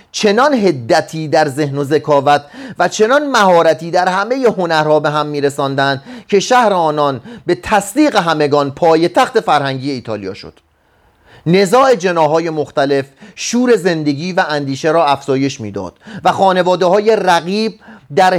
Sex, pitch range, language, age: male, 150-215 Hz, Persian, 40-59